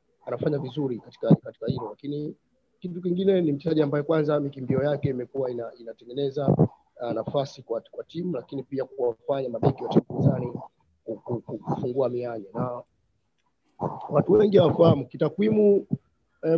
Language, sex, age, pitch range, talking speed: Swahili, male, 30-49, 130-165 Hz, 125 wpm